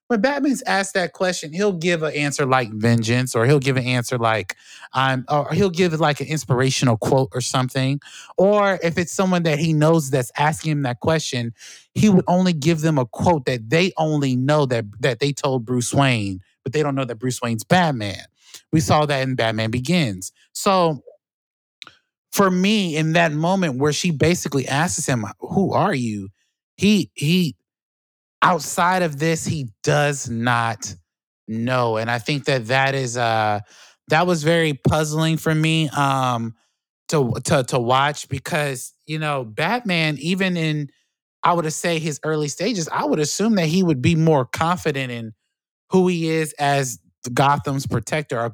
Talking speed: 175 wpm